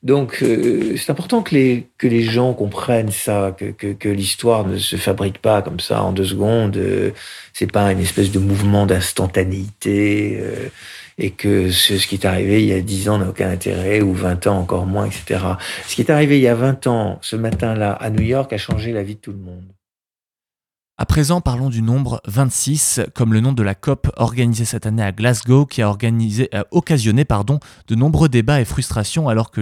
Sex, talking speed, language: male, 215 wpm, French